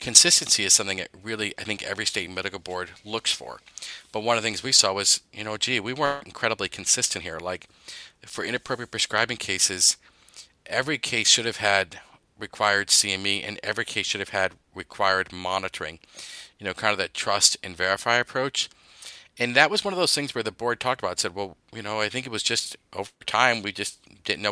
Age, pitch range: 40-59, 95-115 Hz